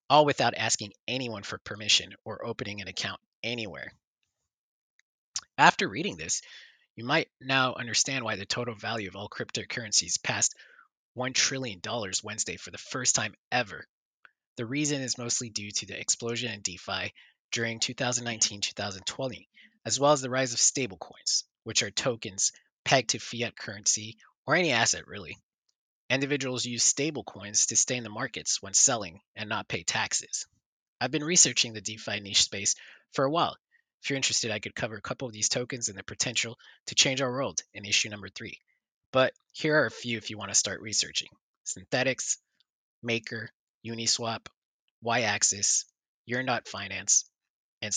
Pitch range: 105-130 Hz